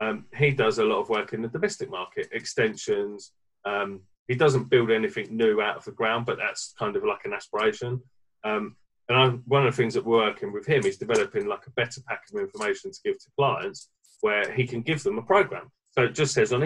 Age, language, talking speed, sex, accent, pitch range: 30-49, English, 230 wpm, male, British, 125-170 Hz